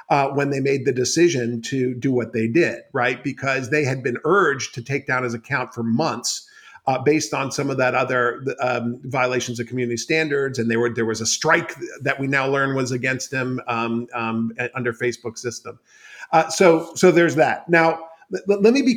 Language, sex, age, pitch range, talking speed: English, male, 50-69, 130-180 Hz, 205 wpm